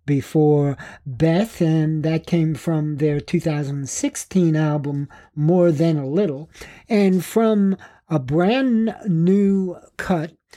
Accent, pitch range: American, 140-180 Hz